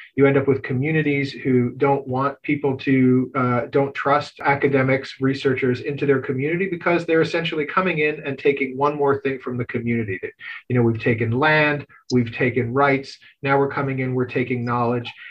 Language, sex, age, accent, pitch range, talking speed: English, male, 40-59, American, 130-150 Hz, 180 wpm